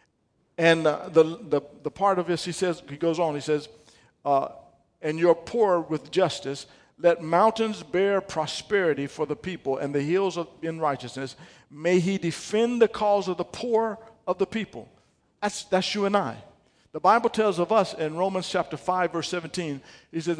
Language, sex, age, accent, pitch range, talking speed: English, male, 50-69, American, 155-210 Hz, 185 wpm